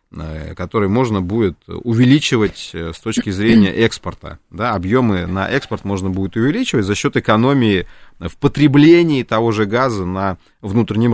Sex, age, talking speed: male, 30-49, 130 wpm